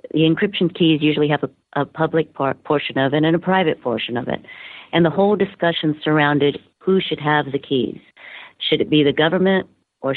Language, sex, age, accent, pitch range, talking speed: English, female, 50-69, American, 135-155 Hz, 200 wpm